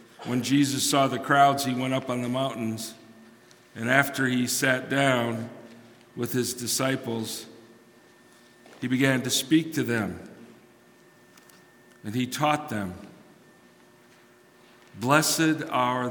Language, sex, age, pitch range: English, male, 50-69, 115-135 Hz